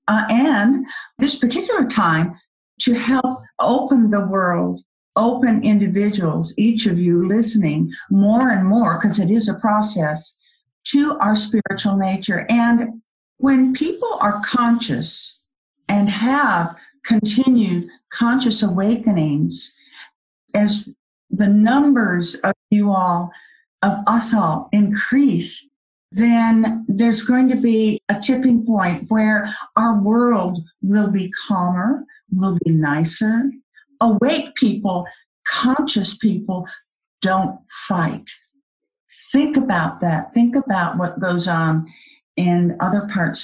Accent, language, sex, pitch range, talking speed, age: American, English, female, 185-250 Hz, 115 wpm, 50-69